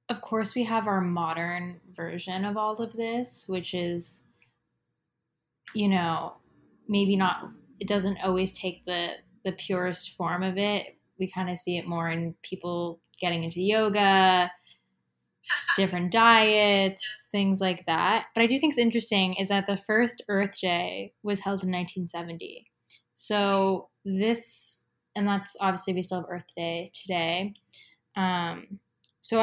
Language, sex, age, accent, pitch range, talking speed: English, female, 10-29, American, 175-200 Hz, 145 wpm